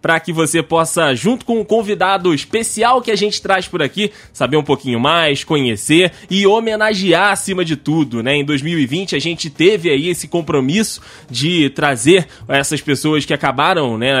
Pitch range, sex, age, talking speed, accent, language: 145-185 Hz, male, 20-39, 175 wpm, Brazilian, Portuguese